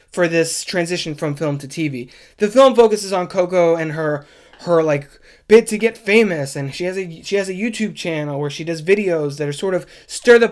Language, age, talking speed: English, 20-39, 215 wpm